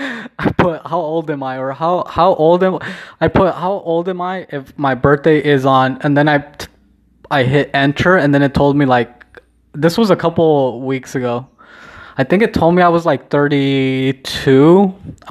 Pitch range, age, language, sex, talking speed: 125-155 Hz, 20-39, English, male, 190 wpm